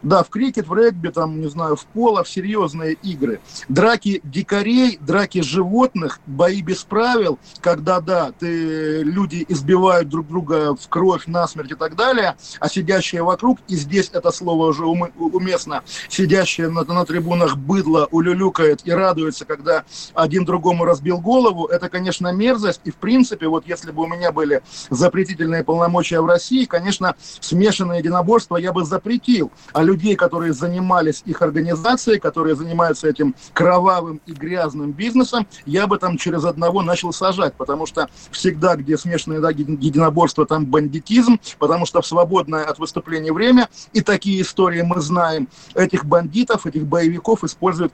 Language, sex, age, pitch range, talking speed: Russian, male, 40-59, 160-190 Hz, 150 wpm